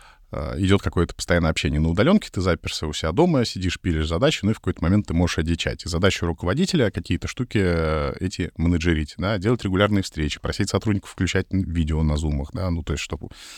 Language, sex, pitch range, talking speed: Russian, male, 80-100 Hz, 195 wpm